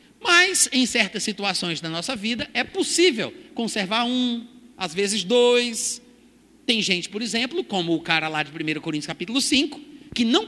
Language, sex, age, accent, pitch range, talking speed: Portuguese, male, 50-69, Brazilian, 200-290 Hz, 165 wpm